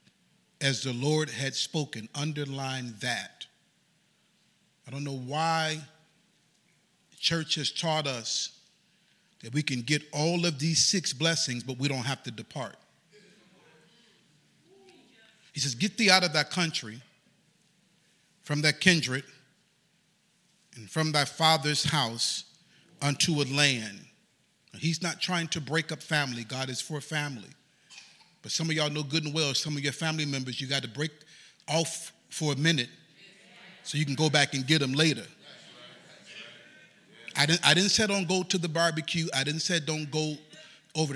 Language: English